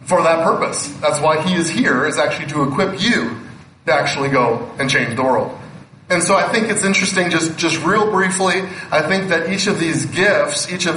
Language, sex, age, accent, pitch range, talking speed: English, male, 20-39, American, 145-185 Hz, 210 wpm